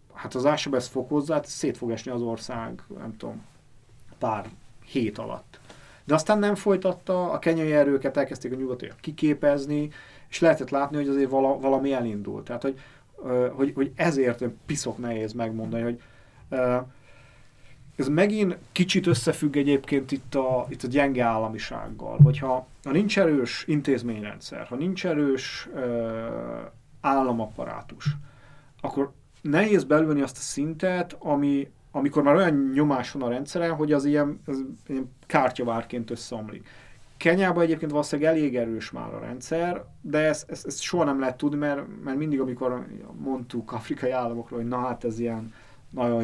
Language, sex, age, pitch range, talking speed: Hungarian, male, 30-49, 120-145 Hz, 145 wpm